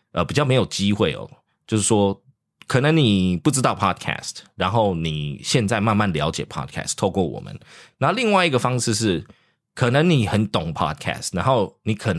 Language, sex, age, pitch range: English, male, 20-39, 90-120 Hz